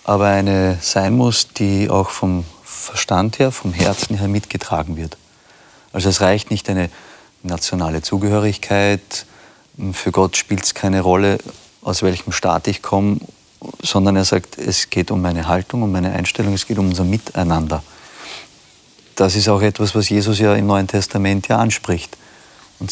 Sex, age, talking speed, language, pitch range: male, 30-49, 160 wpm, German, 95-110 Hz